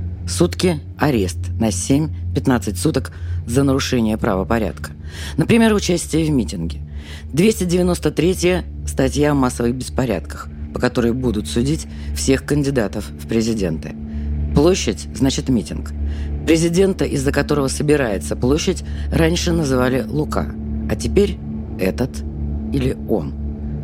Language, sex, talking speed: Russian, female, 105 wpm